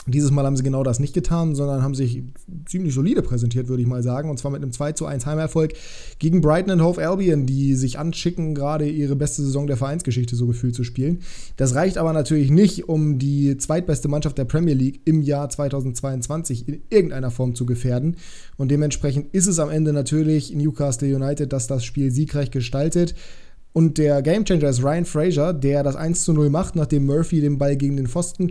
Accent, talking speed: German, 200 wpm